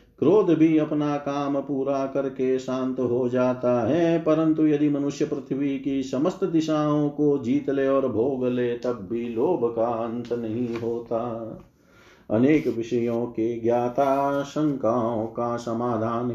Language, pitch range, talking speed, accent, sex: Hindi, 120-145 Hz, 135 wpm, native, male